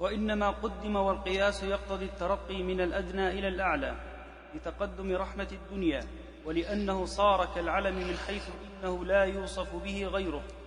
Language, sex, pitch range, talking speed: Arabic, male, 190-205 Hz, 125 wpm